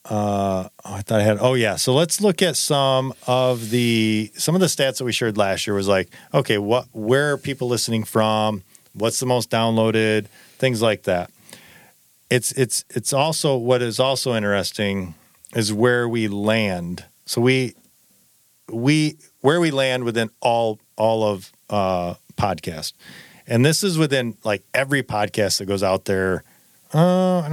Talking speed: 170 wpm